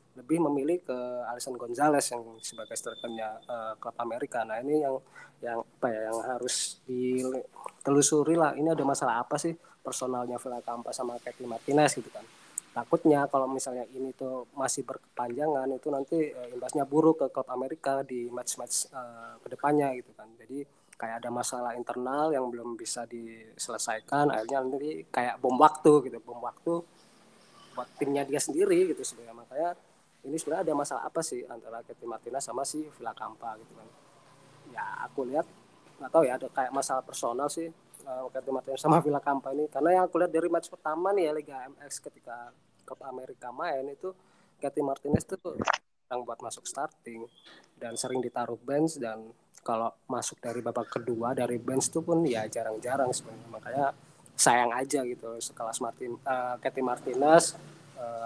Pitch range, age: 120-150 Hz, 20-39